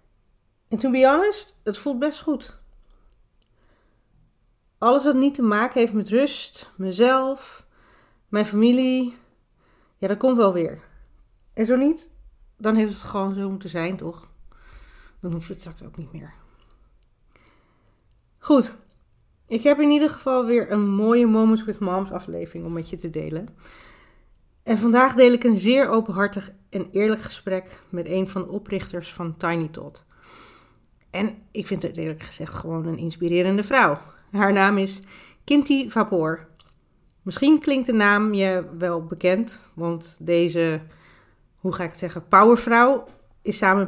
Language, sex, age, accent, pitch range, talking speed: Dutch, female, 40-59, Dutch, 175-235 Hz, 150 wpm